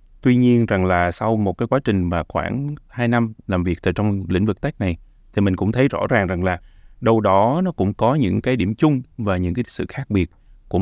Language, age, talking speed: Vietnamese, 20-39, 250 wpm